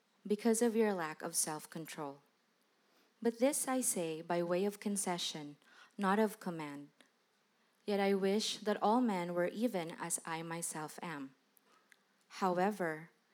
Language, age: English, 20-39